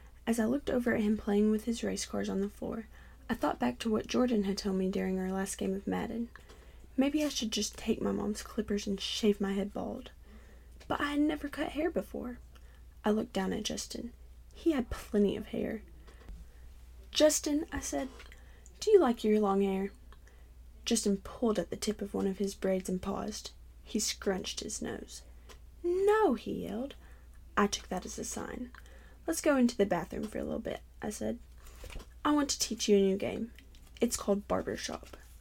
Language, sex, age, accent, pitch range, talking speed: English, female, 10-29, American, 195-240 Hz, 195 wpm